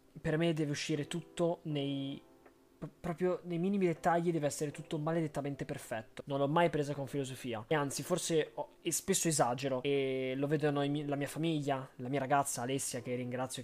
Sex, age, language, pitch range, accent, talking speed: male, 20-39, Italian, 140-165 Hz, native, 175 wpm